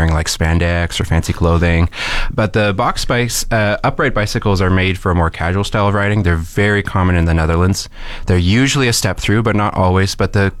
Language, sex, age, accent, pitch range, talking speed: English, male, 20-39, American, 90-110 Hz, 210 wpm